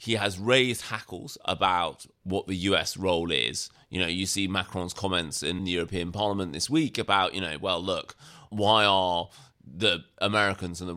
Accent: British